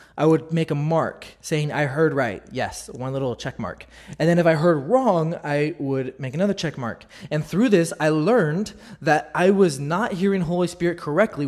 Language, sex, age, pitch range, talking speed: English, male, 20-39, 140-180 Hz, 205 wpm